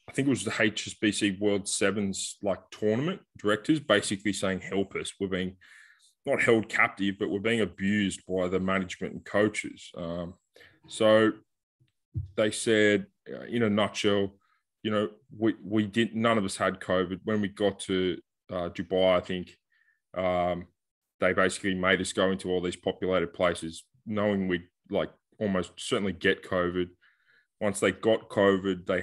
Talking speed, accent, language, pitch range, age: 160 wpm, Australian, English, 90-105 Hz, 20-39